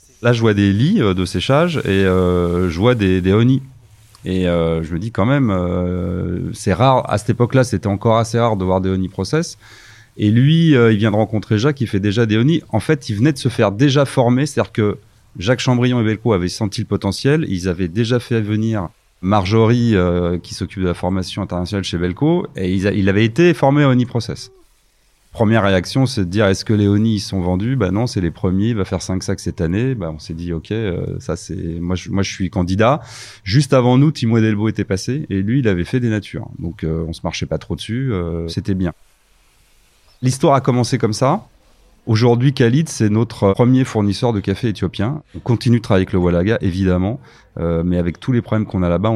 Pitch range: 95-120 Hz